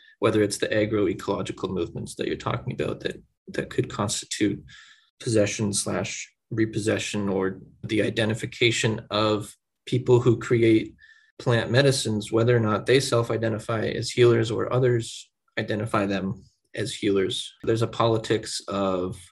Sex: male